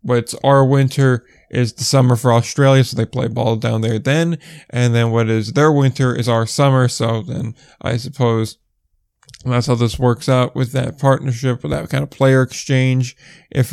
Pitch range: 125-145 Hz